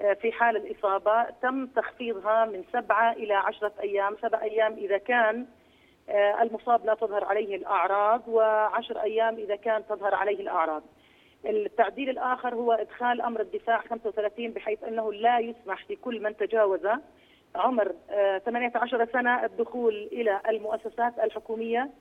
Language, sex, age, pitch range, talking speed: Arabic, female, 30-49, 205-235 Hz, 130 wpm